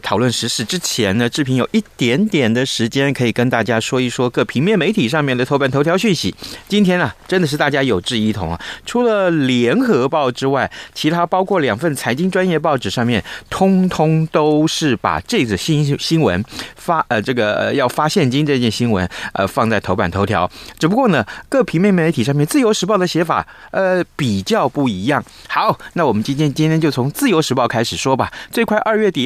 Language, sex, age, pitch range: Chinese, male, 30-49, 115-165 Hz